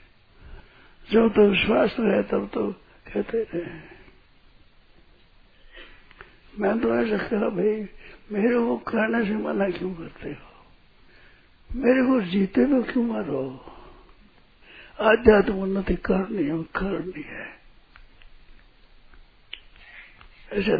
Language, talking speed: Hindi, 100 wpm